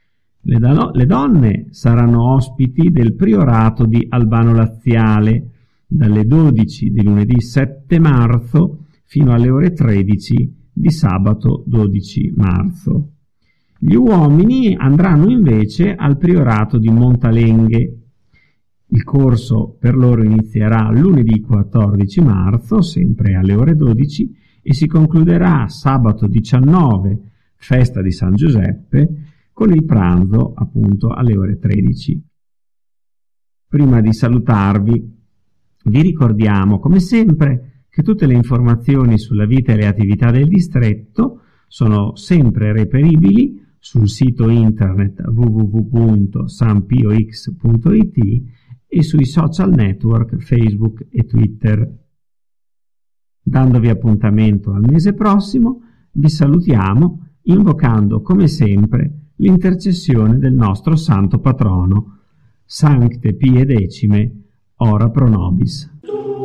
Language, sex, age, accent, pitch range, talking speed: Italian, male, 50-69, native, 110-155 Hz, 100 wpm